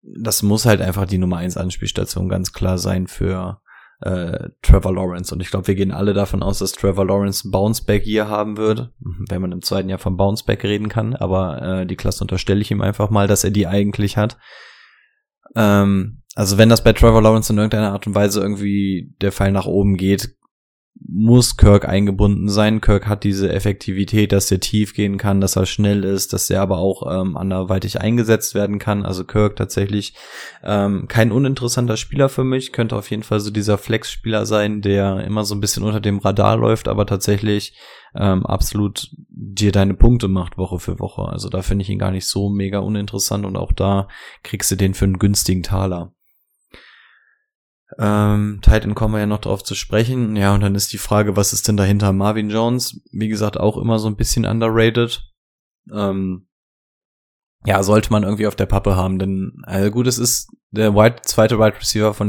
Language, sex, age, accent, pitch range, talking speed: German, male, 20-39, German, 95-110 Hz, 195 wpm